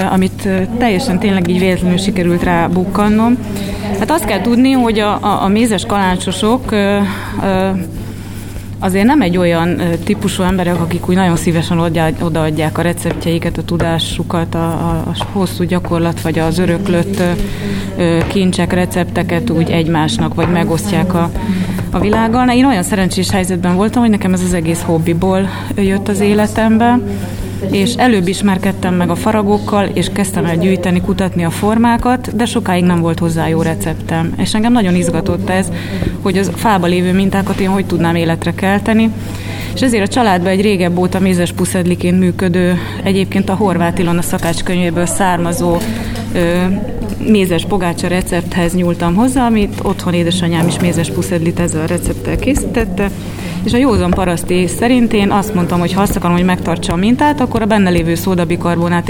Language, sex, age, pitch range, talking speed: Hungarian, female, 20-39, 170-205 Hz, 150 wpm